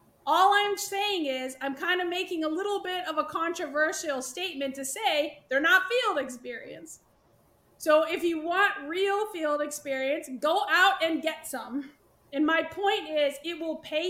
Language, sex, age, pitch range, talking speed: English, female, 30-49, 280-350 Hz, 170 wpm